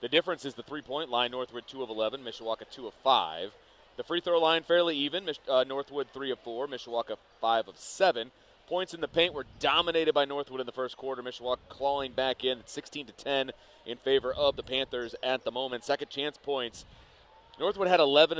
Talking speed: 200 wpm